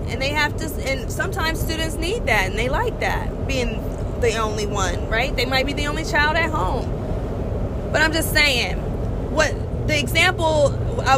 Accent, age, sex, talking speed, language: American, 20-39, female, 180 wpm, English